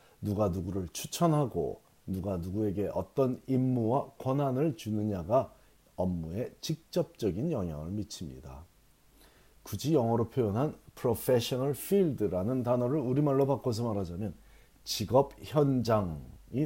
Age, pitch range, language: 40-59, 95-135 Hz, Korean